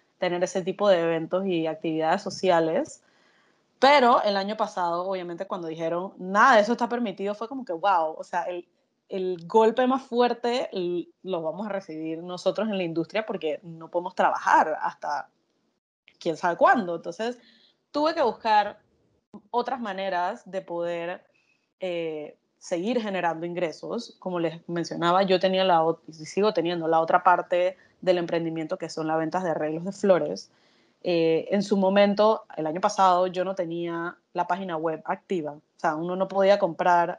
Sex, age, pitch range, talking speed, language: female, 20-39, 170-205 Hz, 160 wpm, Spanish